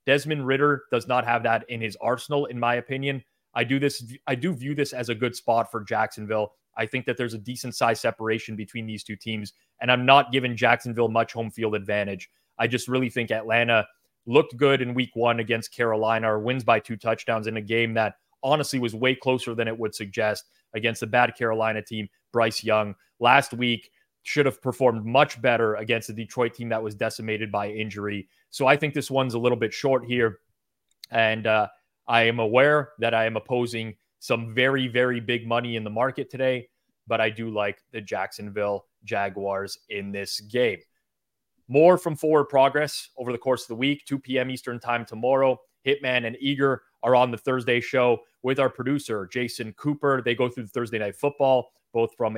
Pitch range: 110-130 Hz